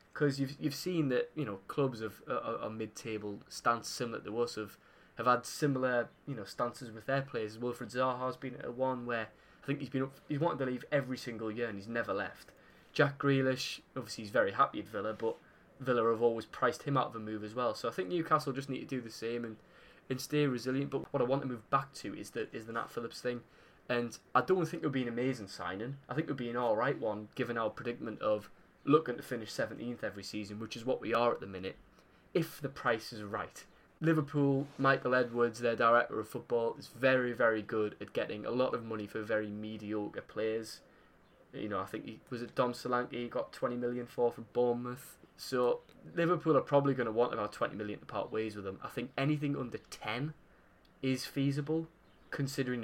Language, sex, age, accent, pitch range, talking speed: English, male, 10-29, British, 110-135 Hz, 225 wpm